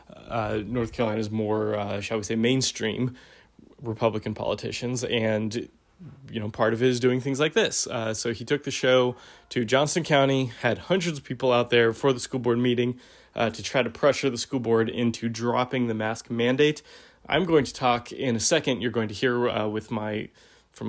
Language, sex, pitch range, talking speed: English, male, 115-135 Hz, 200 wpm